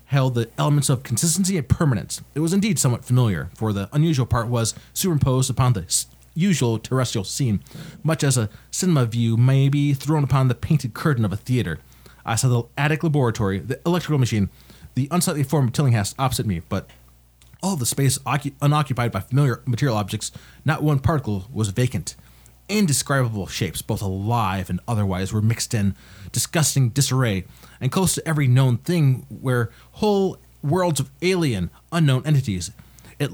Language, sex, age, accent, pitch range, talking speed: English, male, 30-49, American, 110-145 Hz, 165 wpm